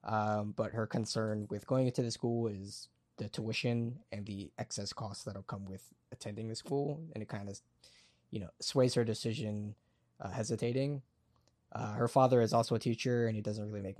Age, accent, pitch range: 10-29, American, 105-125 Hz